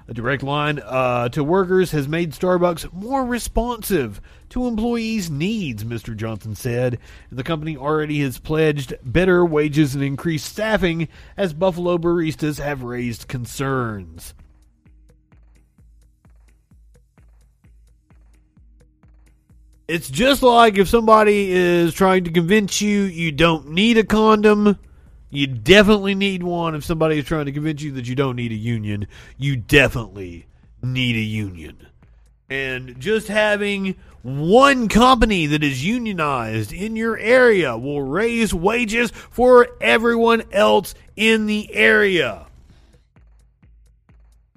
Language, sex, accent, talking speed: English, male, American, 120 wpm